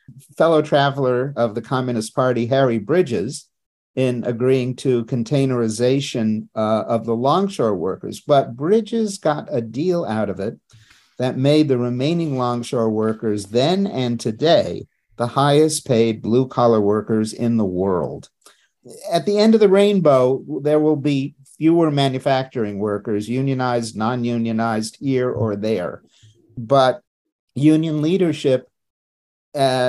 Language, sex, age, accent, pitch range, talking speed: English, male, 50-69, American, 110-140 Hz, 125 wpm